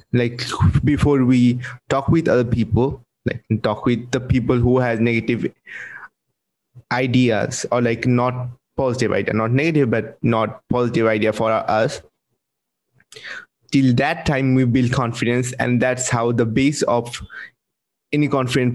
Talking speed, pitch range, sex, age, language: 140 wpm, 115-130 Hz, male, 20-39, English